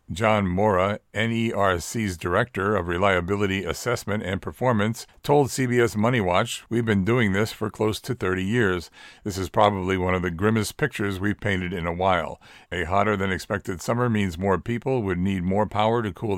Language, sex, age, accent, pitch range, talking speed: English, male, 50-69, American, 95-115 Hz, 170 wpm